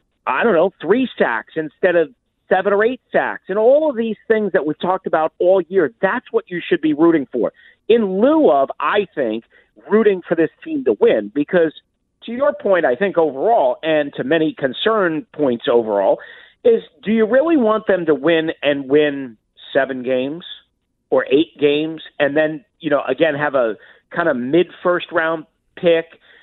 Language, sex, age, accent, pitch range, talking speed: English, male, 40-59, American, 160-215 Hz, 185 wpm